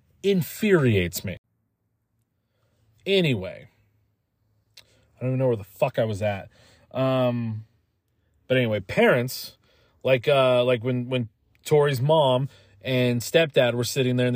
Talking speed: 125 wpm